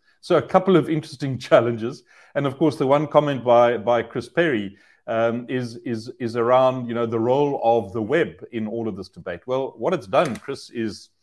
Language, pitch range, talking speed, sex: English, 130-180 Hz, 210 wpm, male